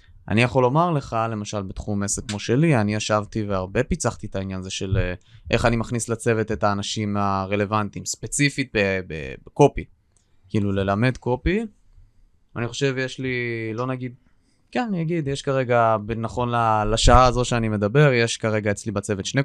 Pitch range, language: 100-125 Hz, Hebrew